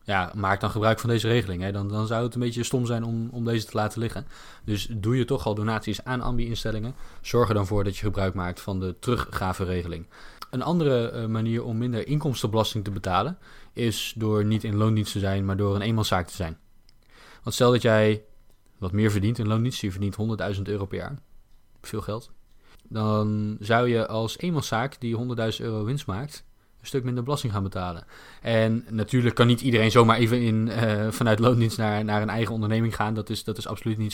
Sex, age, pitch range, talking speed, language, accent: male, 20-39, 105-120 Hz, 210 wpm, Dutch, Dutch